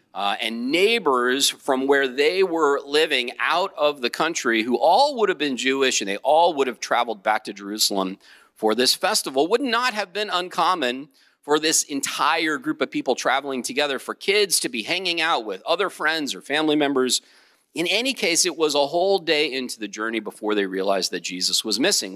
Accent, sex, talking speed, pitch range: American, male, 200 wpm, 130-210 Hz